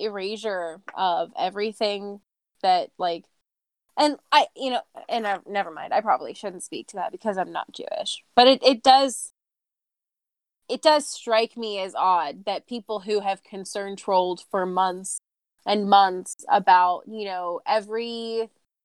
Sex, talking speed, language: female, 150 wpm, English